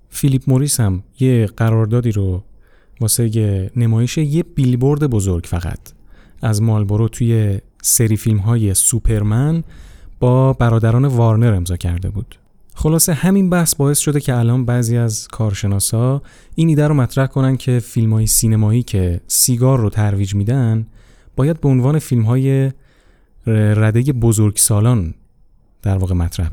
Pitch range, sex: 105-130 Hz, male